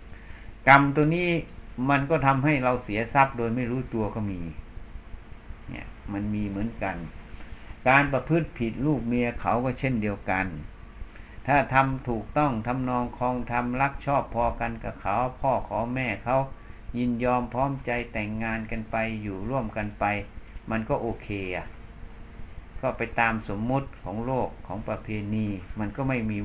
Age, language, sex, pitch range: 60-79, Thai, male, 110-135 Hz